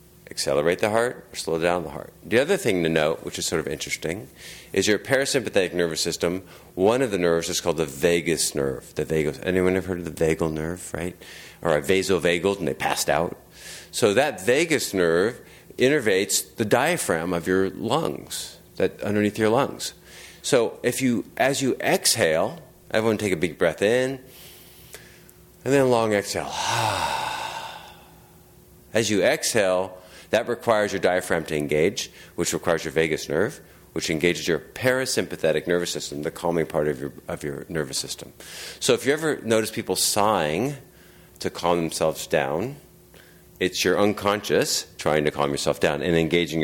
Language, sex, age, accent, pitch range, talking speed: English, male, 50-69, American, 80-110 Hz, 165 wpm